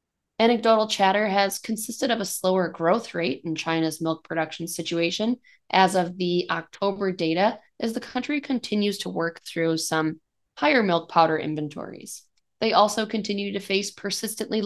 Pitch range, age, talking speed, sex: 170-235 Hz, 20-39, 150 wpm, female